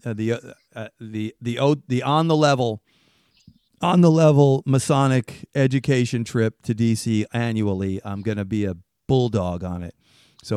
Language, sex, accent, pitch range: English, male, American, 105-135 Hz